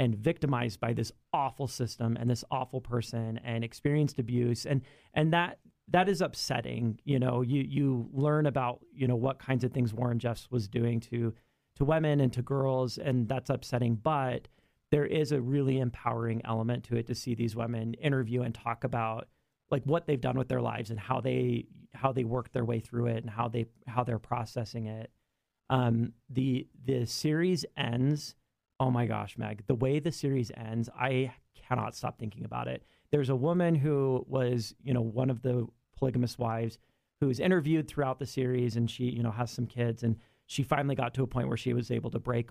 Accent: American